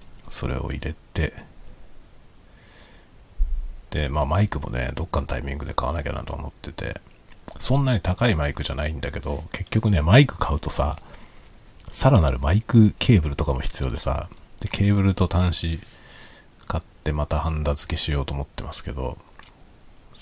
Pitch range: 75-100 Hz